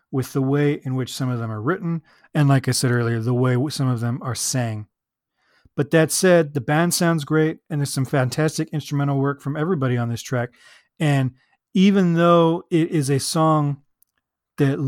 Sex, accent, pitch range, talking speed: male, American, 125-160 Hz, 195 wpm